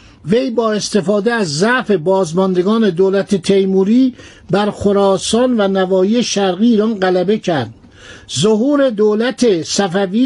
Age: 60-79